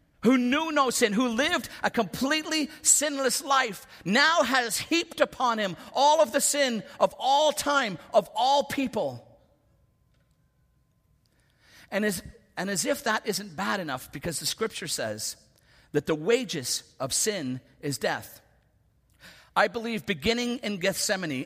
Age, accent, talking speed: 50-69, American, 145 wpm